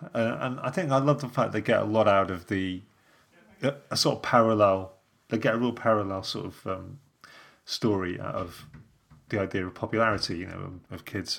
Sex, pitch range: male, 95-115 Hz